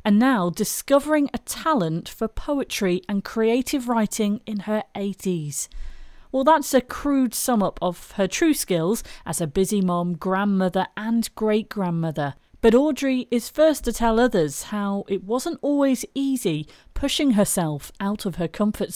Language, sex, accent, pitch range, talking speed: English, female, British, 185-245 Hz, 155 wpm